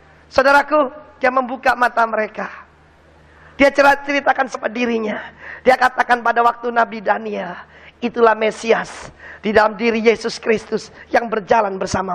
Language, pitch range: Indonesian, 240-330 Hz